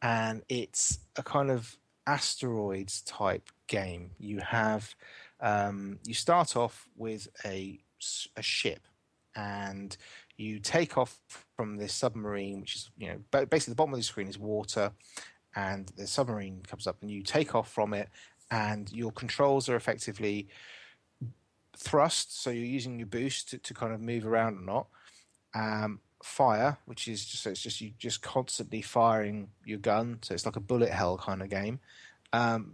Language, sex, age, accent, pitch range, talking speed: English, male, 30-49, British, 105-125 Hz, 165 wpm